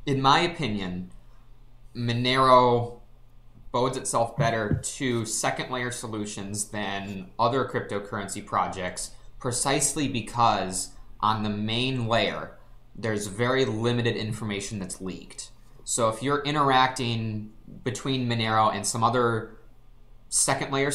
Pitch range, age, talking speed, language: 105-130 Hz, 20-39, 105 wpm, English